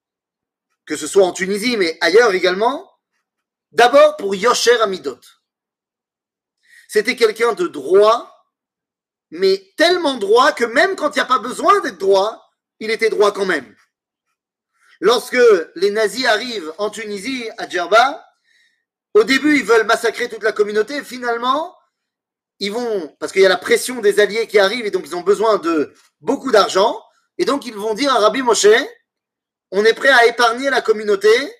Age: 30-49